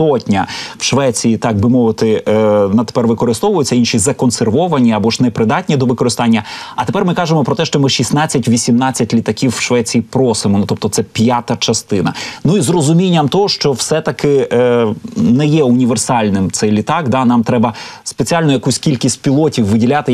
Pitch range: 115-145 Hz